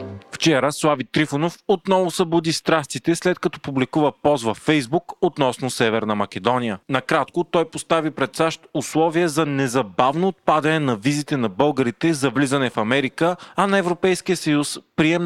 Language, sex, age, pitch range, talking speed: Bulgarian, male, 30-49, 125-165 Hz, 145 wpm